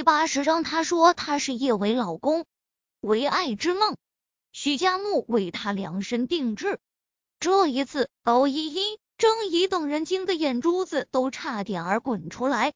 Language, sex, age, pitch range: Chinese, female, 20-39, 245-355 Hz